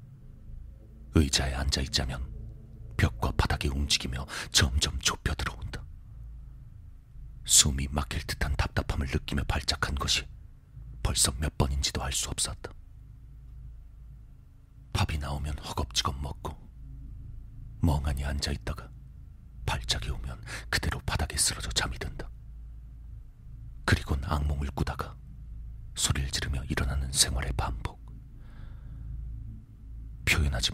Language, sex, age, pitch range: Korean, male, 40-59, 70-110 Hz